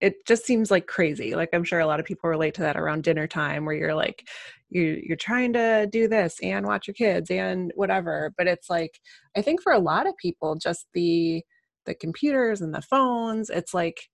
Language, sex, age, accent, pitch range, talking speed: English, female, 20-39, American, 165-215 Hz, 220 wpm